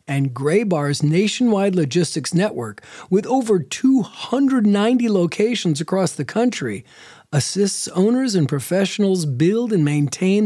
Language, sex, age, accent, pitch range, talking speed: English, male, 40-59, American, 150-200 Hz, 110 wpm